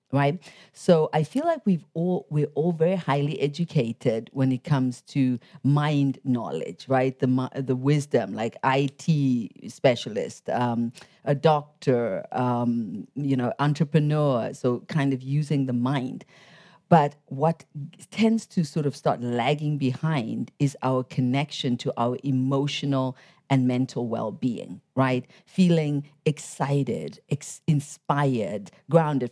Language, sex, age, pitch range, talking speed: English, female, 50-69, 130-160 Hz, 125 wpm